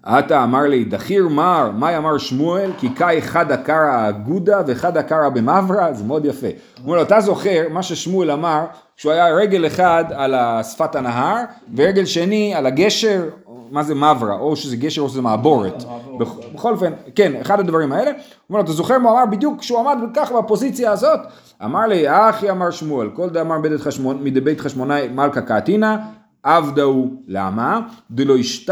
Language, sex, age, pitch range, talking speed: Hebrew, male, 40-59, 135-200 Hz, 160 wpm